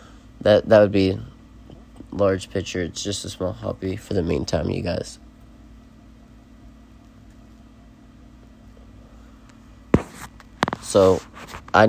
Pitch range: 95-105 Hz